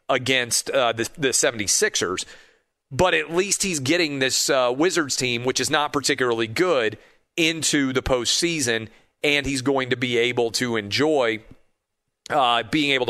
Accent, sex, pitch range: American, male, 120-140 Hz